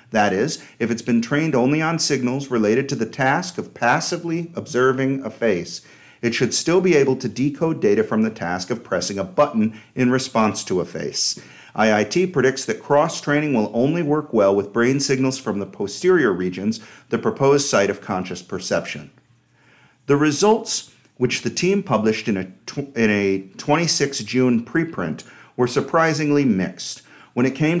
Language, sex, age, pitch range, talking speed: English, male, 40-59, 110-150 Hz, 170 wpm